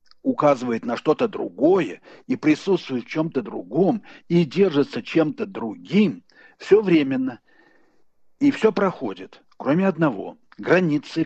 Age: 60-79